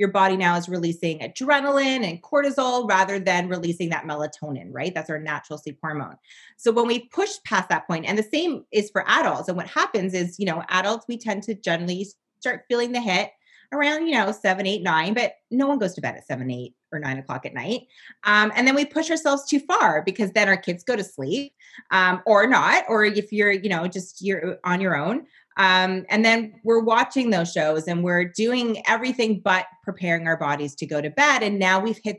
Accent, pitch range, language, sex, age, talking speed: American, 175-230 Hz, English, female, 30-49, 220 wpm